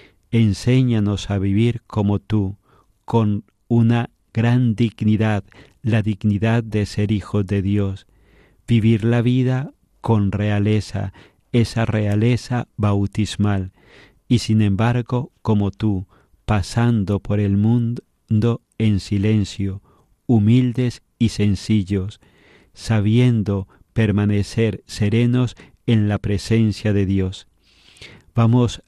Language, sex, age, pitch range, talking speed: Spanish, male, 50-69, 100-115 Hz, 100 wpm